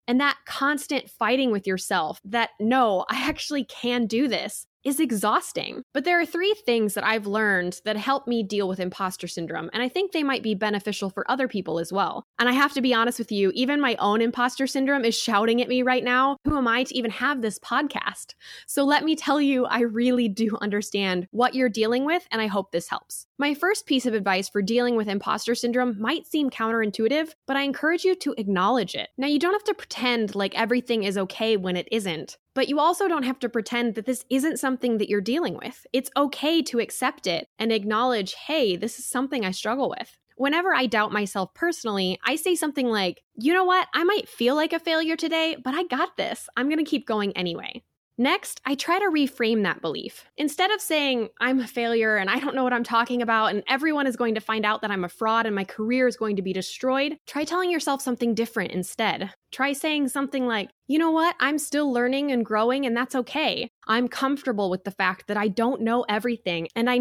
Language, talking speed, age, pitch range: English, 225 wpm, 10-29, 215-280 Hz